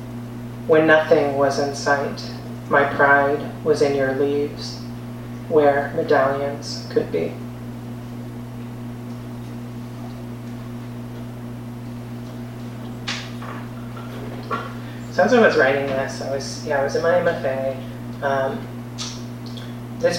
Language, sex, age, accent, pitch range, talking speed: English, female, 30-49, American, 120-140 Hz, 90 wpm